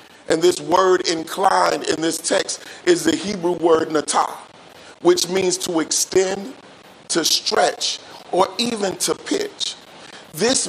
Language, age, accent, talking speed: English, 40-59, American, 130 wpm